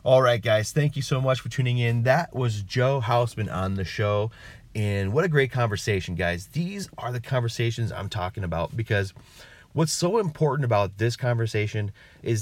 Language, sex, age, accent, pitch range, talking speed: English, male, 30-49, American, 95-130 Hz, 185 wpm